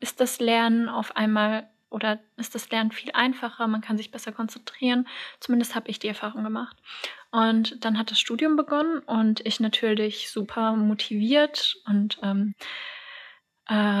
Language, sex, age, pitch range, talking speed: German, female, 20-39, 210-240 Hz, 155 wpm